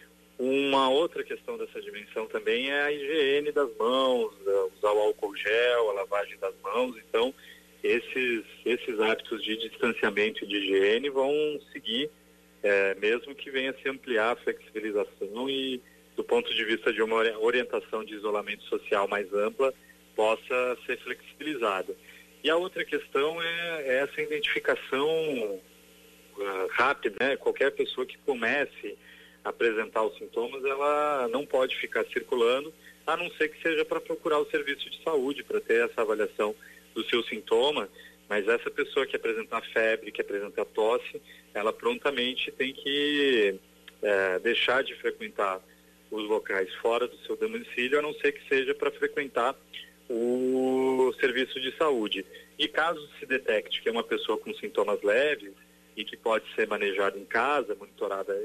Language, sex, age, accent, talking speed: Portuguese, male, 40-59, Brazilian, 150 wpm